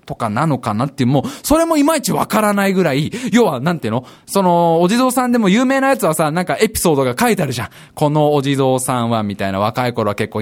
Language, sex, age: Japanese, male, 20-39